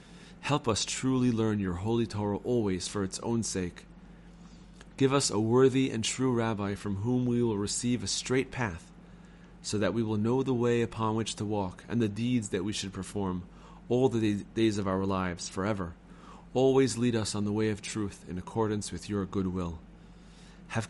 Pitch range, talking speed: 105-135 Hz, 190 wpm